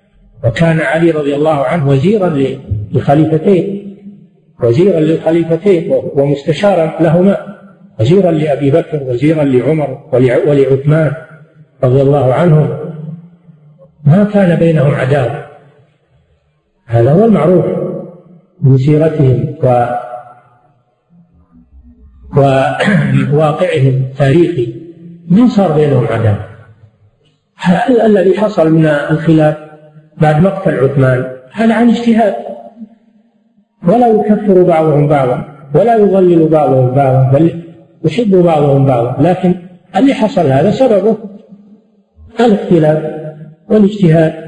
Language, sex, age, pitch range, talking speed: Arabic, male, 50-69, 135-185 Hz, 90 wpm